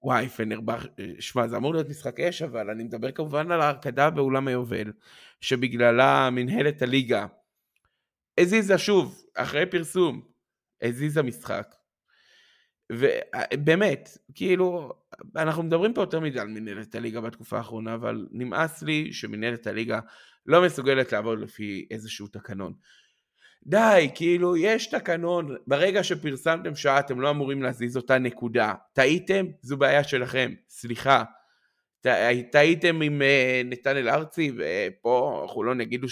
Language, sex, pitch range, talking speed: Hebrew, male, 120-175 Hz, 125 wpm